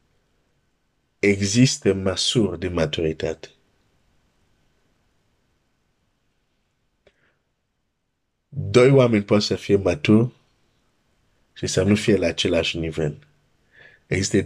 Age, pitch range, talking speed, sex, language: 50-69, 95-120 Hz, 75 wpm, male, Romanian